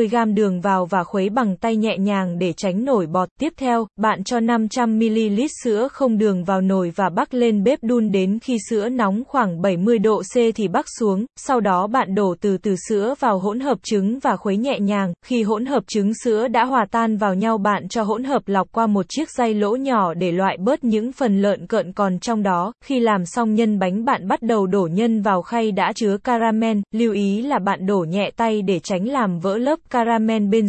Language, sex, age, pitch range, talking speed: Vietnamese, female, 20-39, 195-240 Hz, 225 wpm